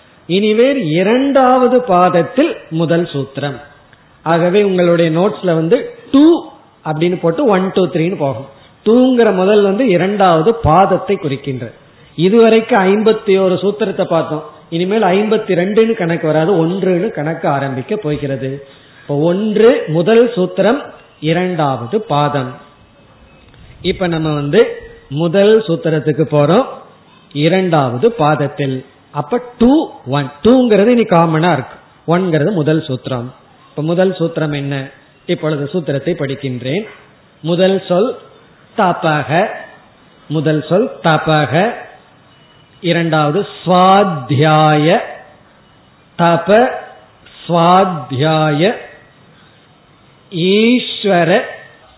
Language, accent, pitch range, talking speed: Tamil, native, 150-200 Hz, 85 wpm